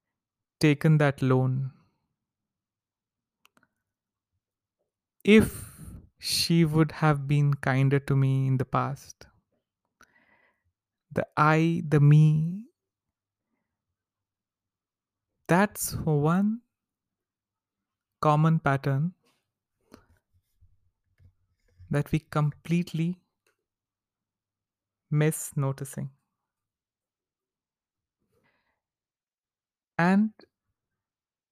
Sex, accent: male, Indian